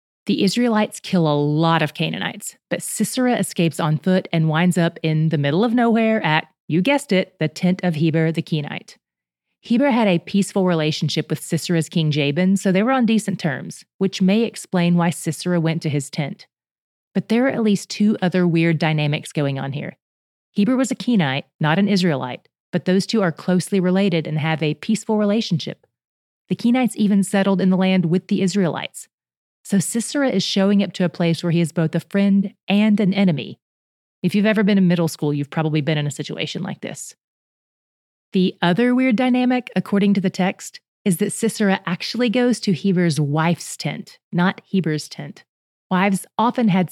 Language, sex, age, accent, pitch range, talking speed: English, female, 30-49, American, 160-210 Hz, 190 wpm